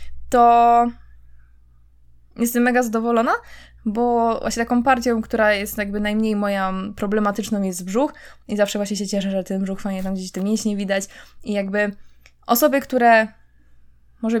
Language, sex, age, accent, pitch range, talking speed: Polish, female, 20-39, native, 190-225 Hz, 145 wpm